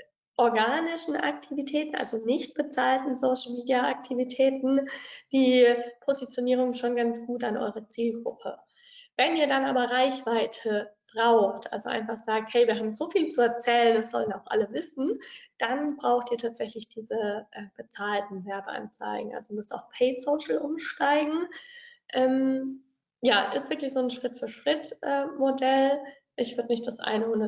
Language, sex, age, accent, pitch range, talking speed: German, female, 20-39, German, 225-270 Hz, 135 wpm